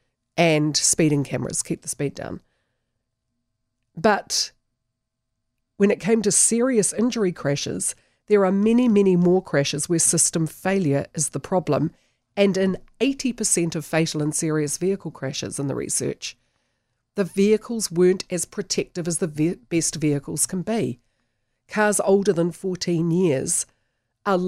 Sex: female